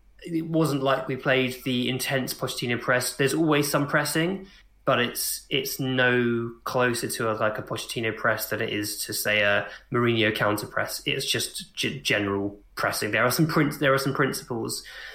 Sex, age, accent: male, 20-39, British